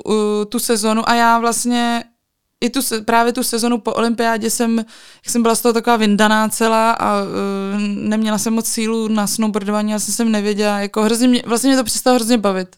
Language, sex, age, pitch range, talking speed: Czech, female, 20-39, 195-225 Hz, 195 wpm